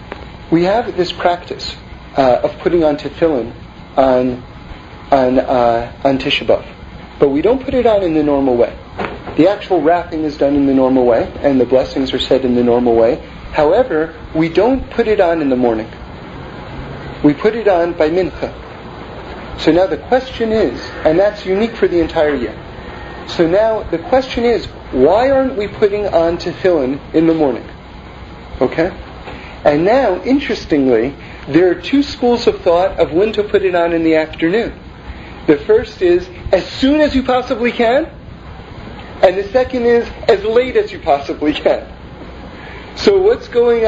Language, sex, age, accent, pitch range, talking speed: English, male, 40-59, American, 155-245 Hz, 170 wpm